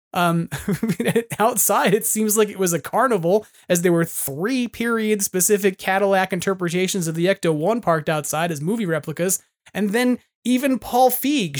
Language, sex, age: English, male, 30-49